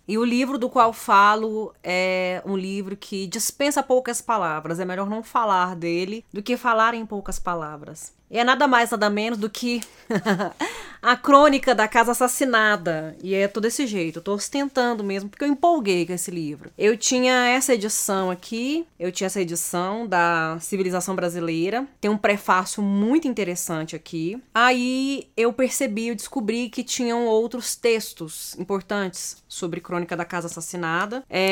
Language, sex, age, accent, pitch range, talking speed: Portuguese, female, 20-39, Brazilian, 180-235 Hz, 160 wpm